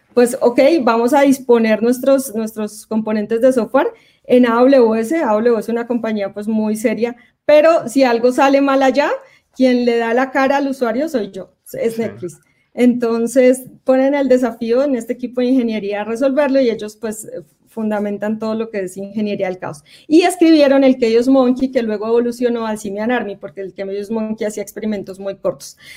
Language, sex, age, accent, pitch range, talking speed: Spanish, female, 30-49, Colombian, 215-260 Hz, 180 wpm